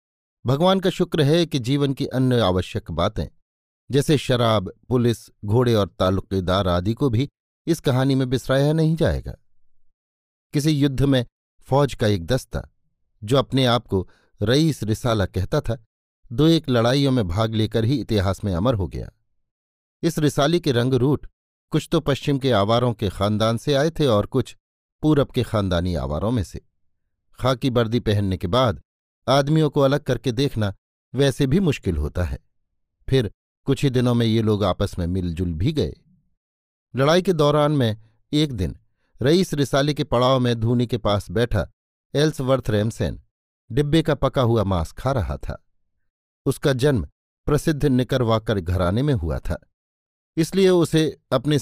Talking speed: 160 wpm